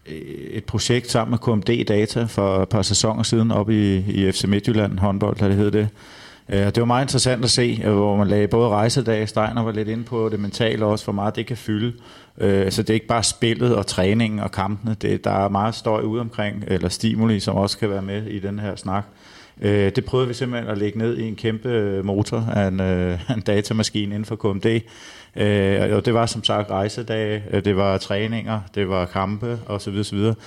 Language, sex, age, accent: Danish, male, 30-49, native